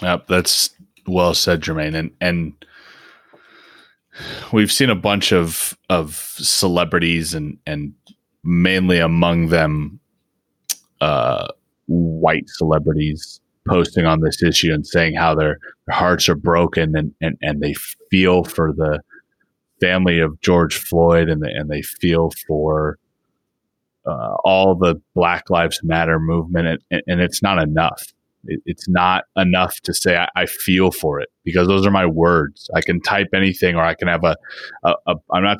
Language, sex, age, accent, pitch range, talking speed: English, male, 30-49, American, 80-95 Hz, 150 wpm